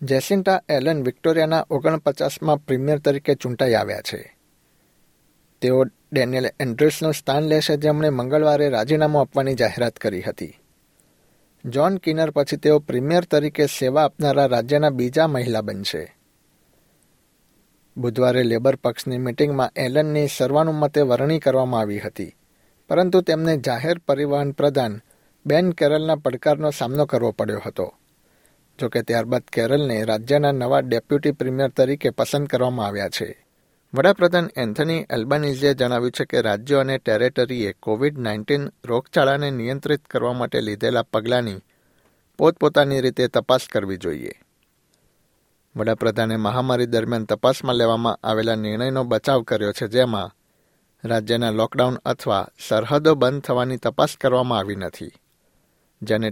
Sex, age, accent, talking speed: male, 60-79, native, 120 wpm